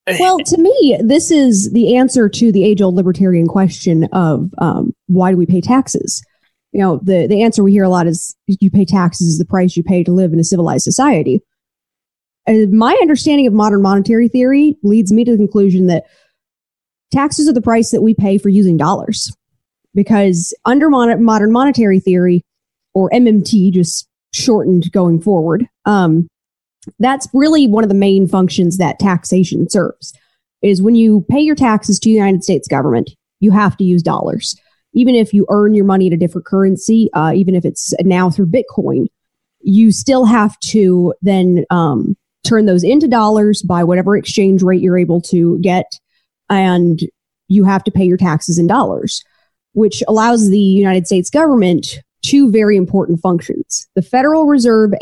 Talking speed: 180 wpm